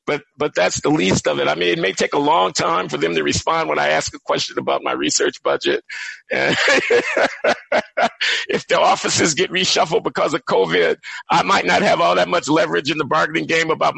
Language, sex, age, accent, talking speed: English, male, 50-69, American, 215 wpm